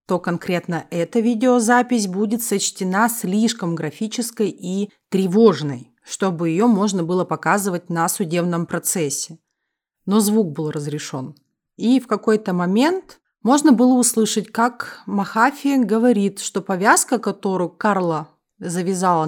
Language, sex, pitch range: Russian, female, 170-230 Hz